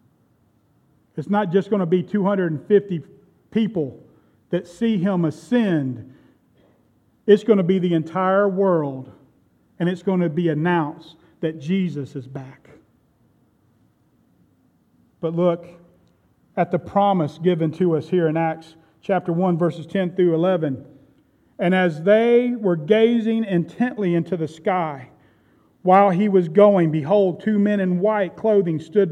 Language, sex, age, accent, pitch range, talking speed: English, male, 40-59, American, 160-205 Hz, 135 wpm